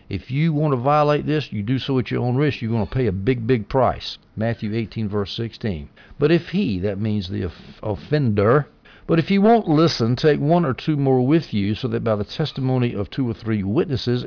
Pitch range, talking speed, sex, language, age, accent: 105-135 Hz, 225 wpm, male, English, 60-79, American